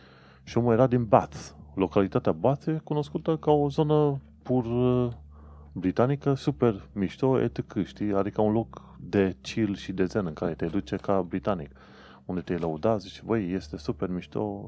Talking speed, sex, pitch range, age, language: 155 wpm, male, 80-105 Hz, 30-49, Romanian